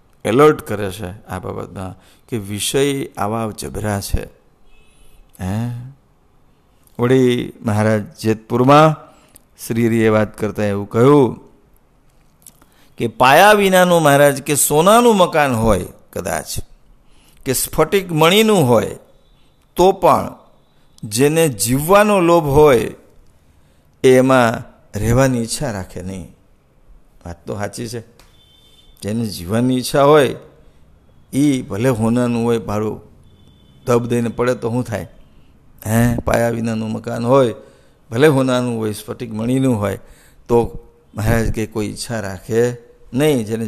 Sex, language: male, English